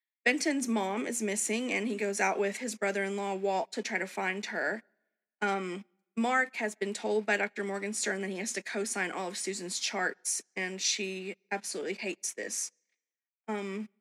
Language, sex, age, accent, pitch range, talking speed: English, female, 20-39, American, 190-215 Hz, 175 wpm